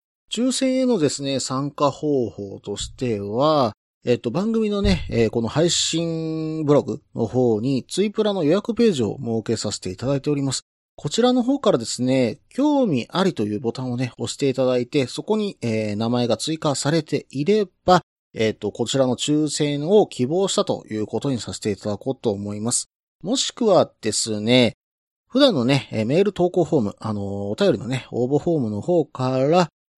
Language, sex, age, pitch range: Japanese, male, 40-59, 115-175 Hz